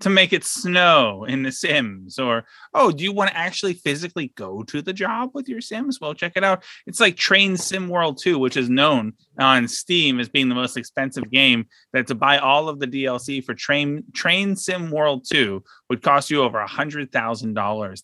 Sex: male